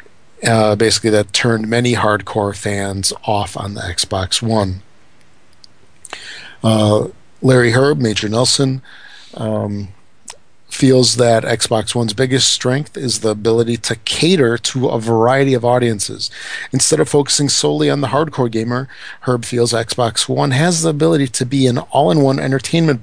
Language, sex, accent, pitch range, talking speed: English, male, American, 110-135 Hz, 140 wpm